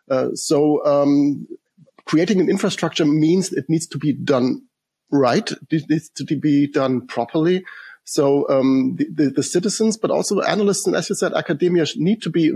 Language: English